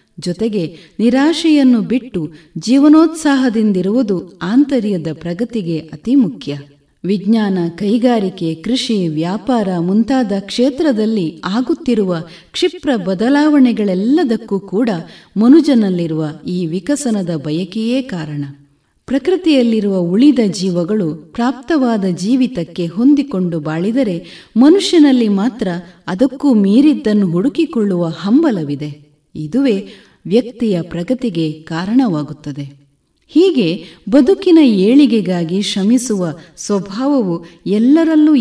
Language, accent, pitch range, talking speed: Kannada, native, 175-260 Hz, 70 wpm